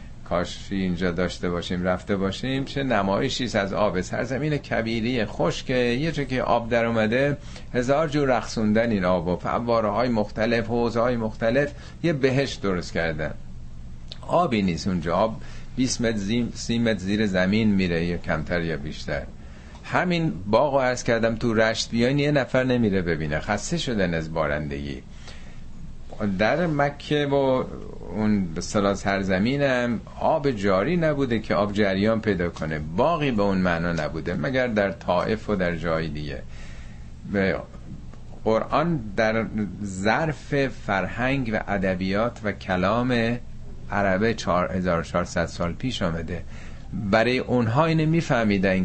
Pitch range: 90-125 Hz